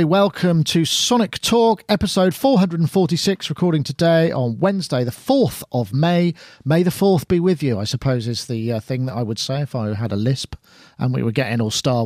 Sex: male